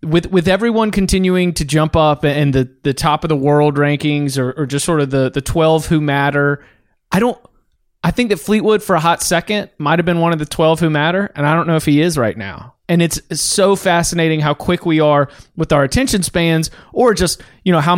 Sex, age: male, 30-49